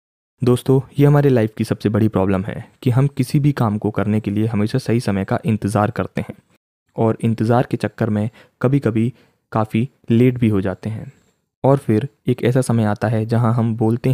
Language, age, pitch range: Hindi, 20-39, 110-130 Hz